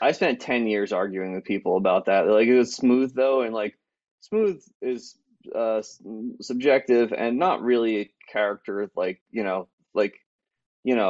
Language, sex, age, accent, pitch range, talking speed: English, male, 20-39, American, 100-125 Hz, 170 wpm